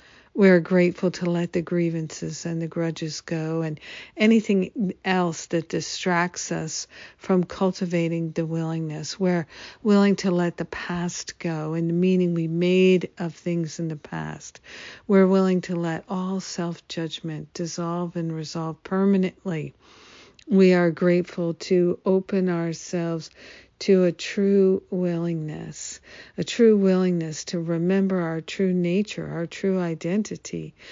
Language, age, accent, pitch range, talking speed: English, 60-79, American, 165-190 Hz, 130 wpm